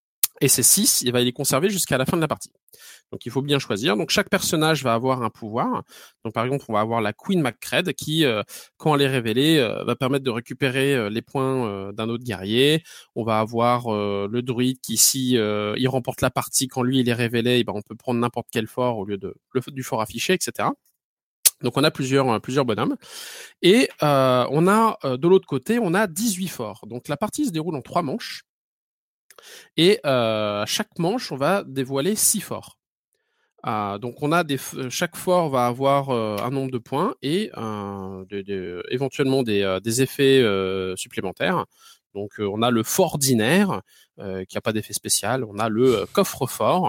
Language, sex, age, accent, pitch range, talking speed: French, male, 20-39, French, 110-145 Hz, 190 wpm